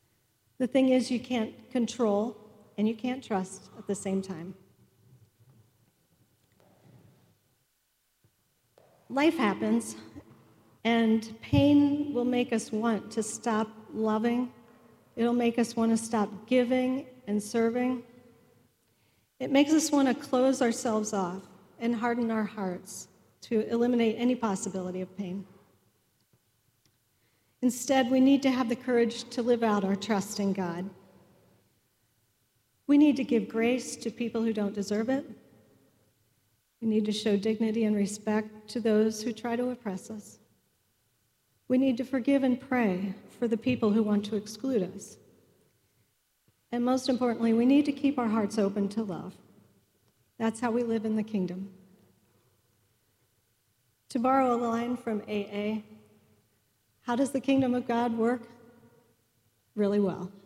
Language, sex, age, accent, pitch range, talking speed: English, female, 40-59, American, 180-240 Hz, 140 wpm